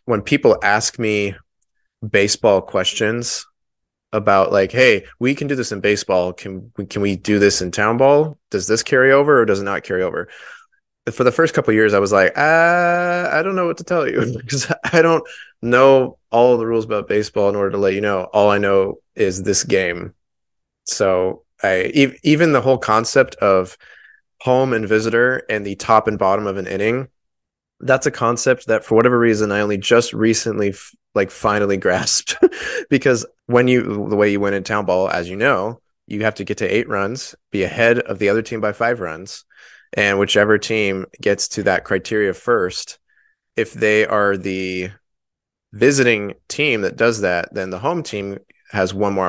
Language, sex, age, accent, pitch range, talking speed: English, male, 20-39, American, 100-125 Hz, 190 wpm